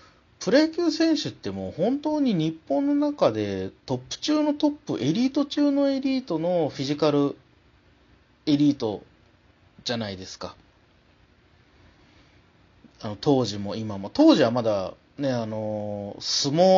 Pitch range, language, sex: 105-170 Hz, Japanese, male